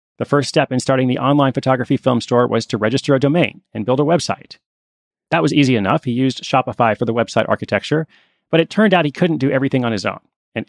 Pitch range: 120-150 Hz